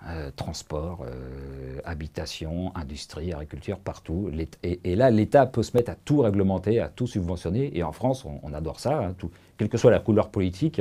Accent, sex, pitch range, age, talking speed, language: French, male, 85-120 Hz, 50-69, 195 wpm, French